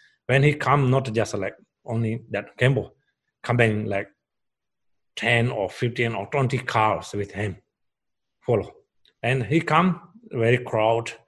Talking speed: 135 wpm